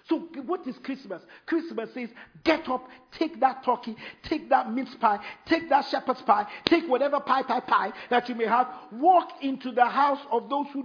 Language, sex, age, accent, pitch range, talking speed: English, male, 50-69, Nigerian, 245-310 Hz, 195 wpm